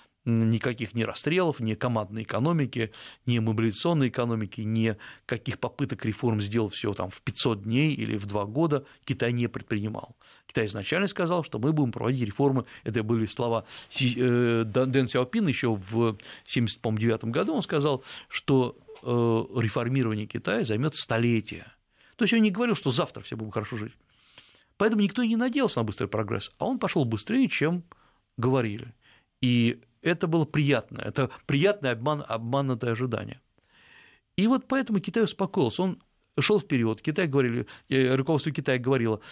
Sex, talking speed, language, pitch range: male, 145 wpm, Russian, 115-160 Hz